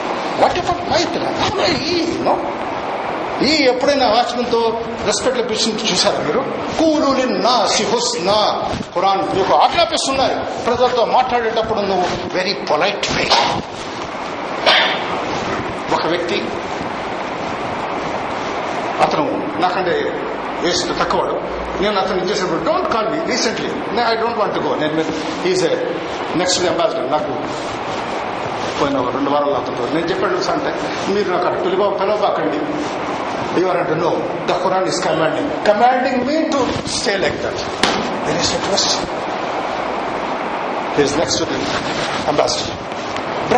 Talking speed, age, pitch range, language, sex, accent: 55 wpm, 50-69, 225-290 Hz, Telugu, male, native